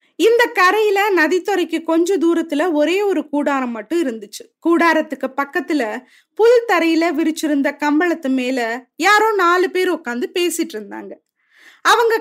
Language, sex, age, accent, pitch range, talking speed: Tamil, female, 20-39, native, 275-360 Hz, 120 wpm